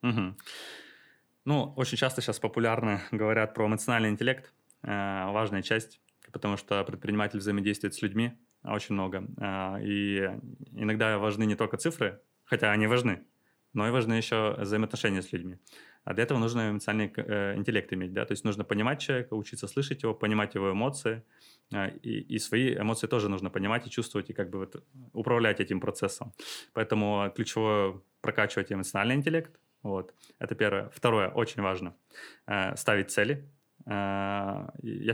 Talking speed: 155 wpm